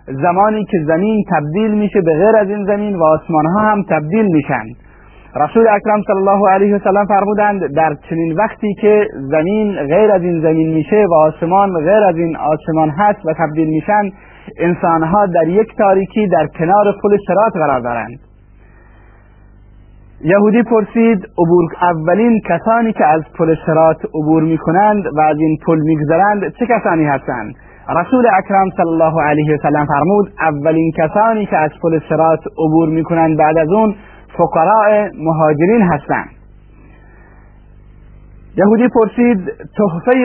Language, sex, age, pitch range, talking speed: Persian, male, 30-49, 155-210 Hz, 145 wpm